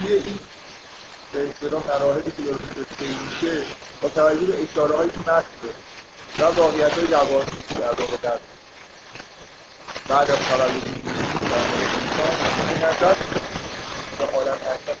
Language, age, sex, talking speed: Persian, 50-69, male, 100 wpm